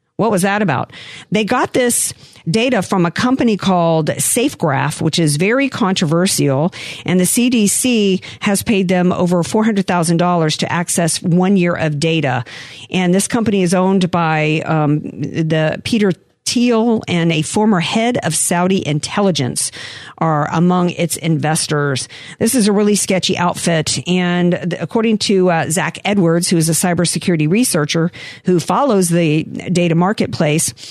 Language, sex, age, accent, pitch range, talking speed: English, female, 50-69, American, 165-215 Hz, 140 wpm